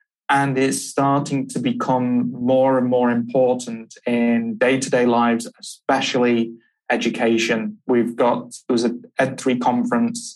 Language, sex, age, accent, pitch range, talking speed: English, male, 20-39, British, 120-145 Hz, 120 wpm